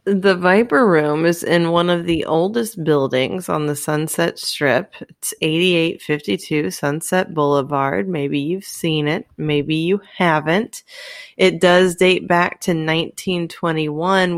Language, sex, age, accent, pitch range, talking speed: English, female, 20-39, American, 155-185 Hz, 130 wpm